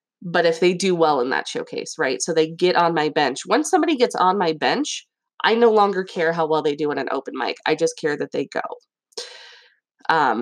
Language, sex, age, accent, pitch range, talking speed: English, female, 20-39, American, 170-245 Hz, 230 wpm